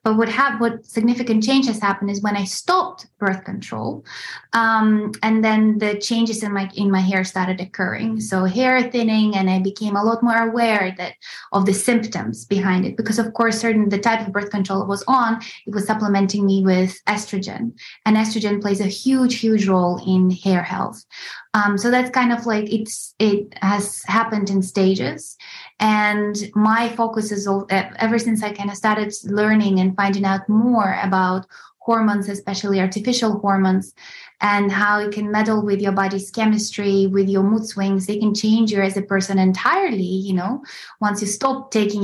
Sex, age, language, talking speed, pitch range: female, 20-39, English, 185 wpm, 195-220 Hz